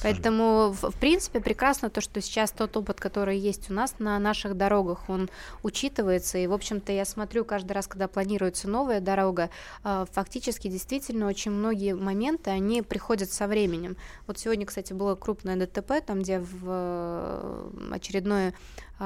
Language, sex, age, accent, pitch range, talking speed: Russian, female, 20-39, native, 185-215 Hz, 155 wpm